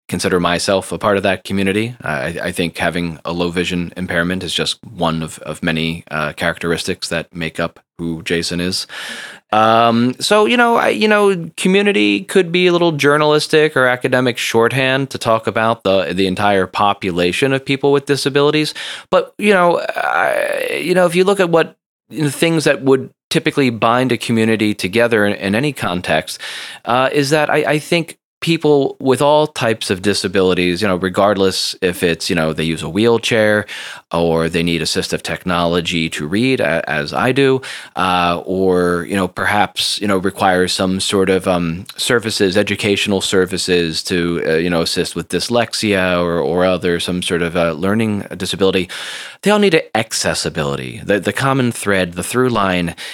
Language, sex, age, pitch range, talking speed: English, male, 30-49, 90-130 Hz, 175 wpm